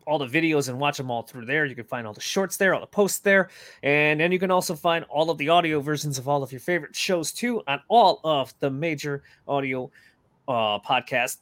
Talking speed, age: 240 wpm, 20-39